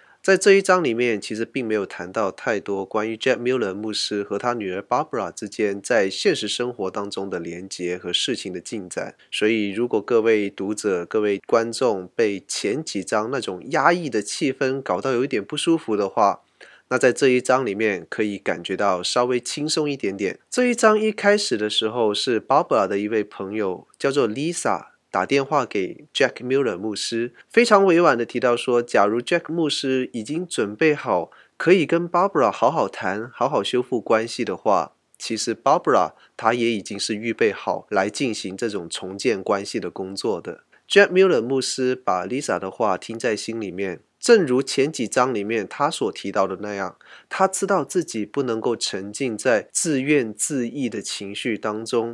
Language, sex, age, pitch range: Chinese, male, 20-39, 105-160 Hz